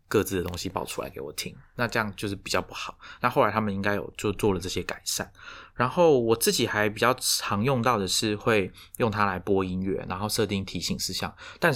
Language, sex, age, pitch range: Chinese, male, 20-39, 95-110 Hz